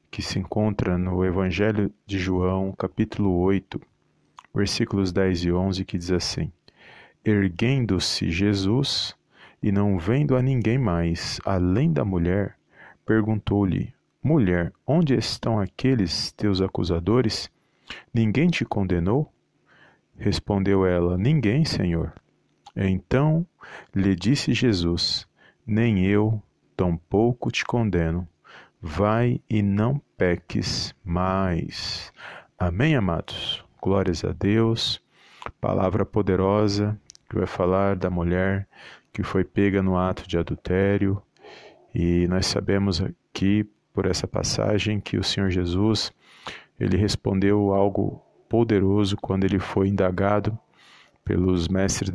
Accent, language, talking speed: Brazilian, Portuguese, 110 wpm